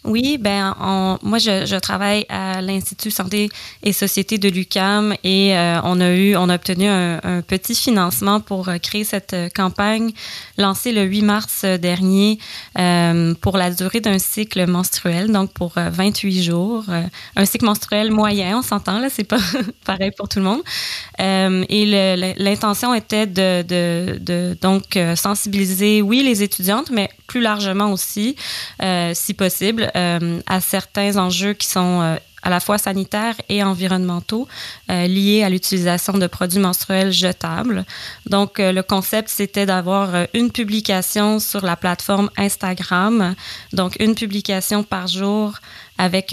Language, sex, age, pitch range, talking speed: French, female, 20-39, 180-205 Hz, 160 wpm